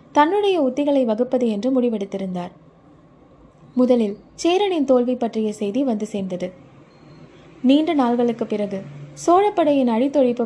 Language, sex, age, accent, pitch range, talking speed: Tamil, female, 20-39, native, 215-280 Hz, 100 wpm